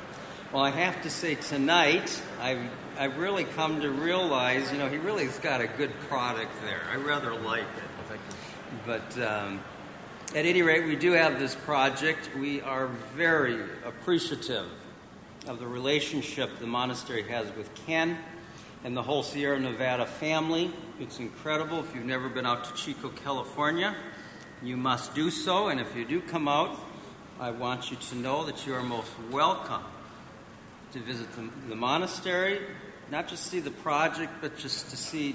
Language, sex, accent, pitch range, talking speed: English, male, American, 120-150 Hz, 165 wpm